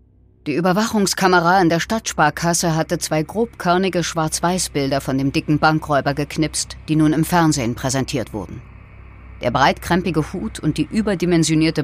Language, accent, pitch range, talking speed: German, German, 135-175 Hz, 130 wpm